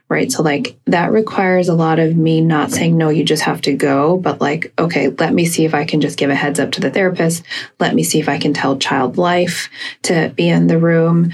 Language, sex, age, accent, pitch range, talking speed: English, female, 20-39, American, 150-185 Hz, 255 wpm